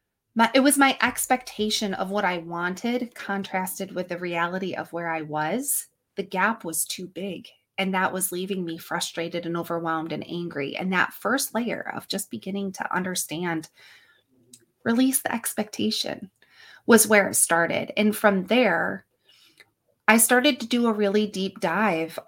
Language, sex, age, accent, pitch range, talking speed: English, female, 20-39, American, 180-230 Hz, 155 wpm